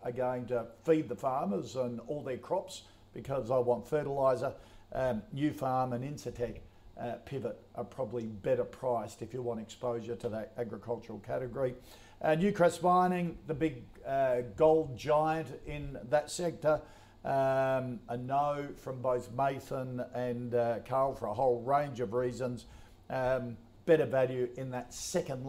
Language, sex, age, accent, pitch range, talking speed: English, male, 50-69, Australian, 120-140 Hz, 155 wpm